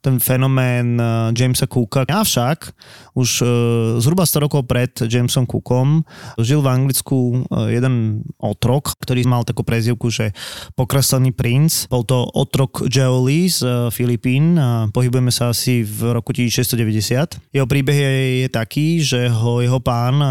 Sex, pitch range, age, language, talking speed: male, 115-130 Hz, 20-39, Slovak, 135 wpm